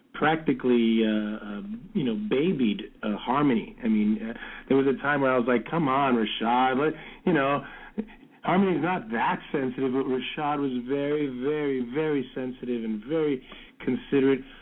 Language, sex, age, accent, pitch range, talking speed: English, male, 40-59, American, 120-155 Hz, 155 wpm